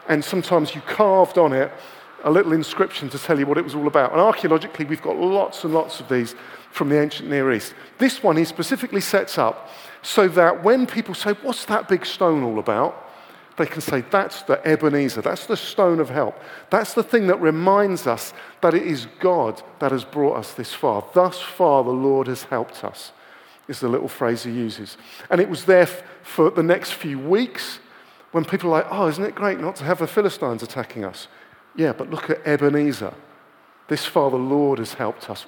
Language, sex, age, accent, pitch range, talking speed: English, male, 50-69, British, 140-185 Hz, 210 wpm